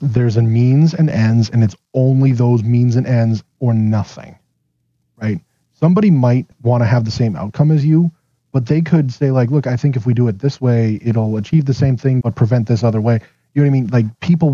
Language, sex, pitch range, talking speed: English, male, 110-135 Hz, 230 wpm